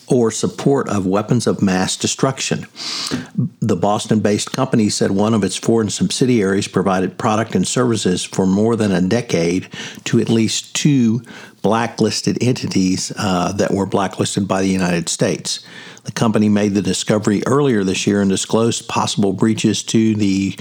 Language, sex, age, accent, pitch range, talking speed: English, male, 60-79, American, 95-110 Hz, 155 wpm